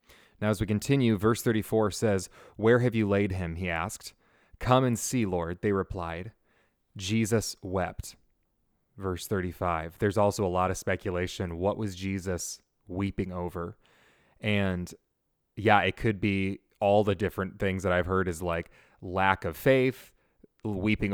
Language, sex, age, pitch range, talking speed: English, male, 20-39, 90-110 Hz, 150 wpm